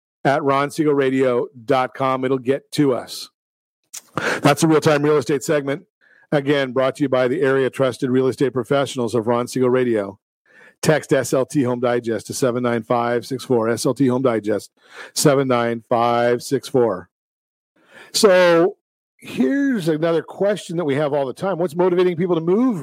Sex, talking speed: male, 140 wpm